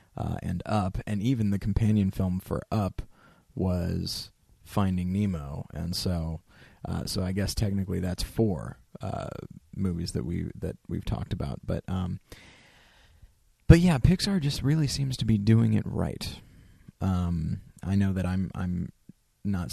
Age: 30-49